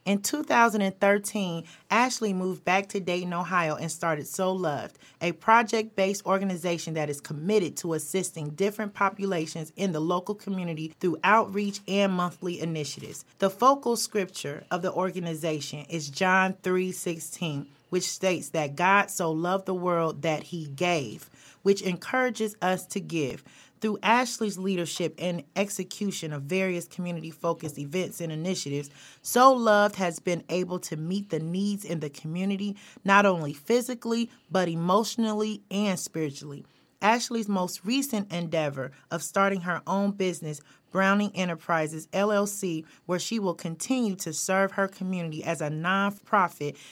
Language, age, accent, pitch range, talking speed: English, 30-49, American, 165-200 Hz, 140 wpm